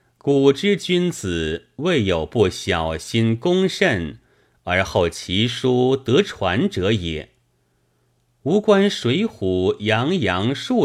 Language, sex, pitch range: Chinese, male, 85-125 Hz